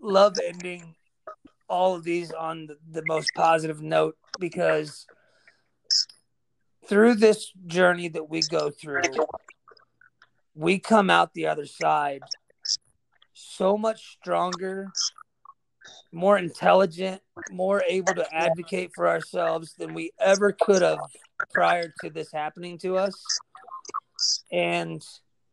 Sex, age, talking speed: male, 30-49, 110 wpm